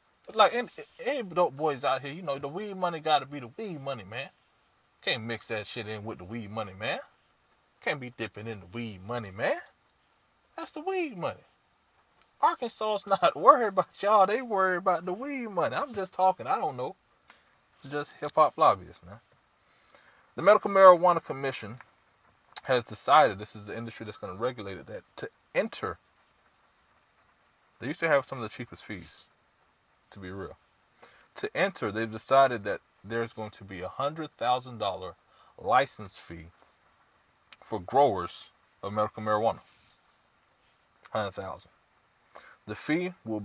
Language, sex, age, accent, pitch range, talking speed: English, male, 20-39, American, 105-175 Hz, 155 wpm